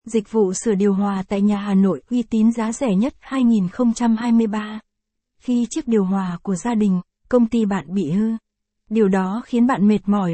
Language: Vietnamese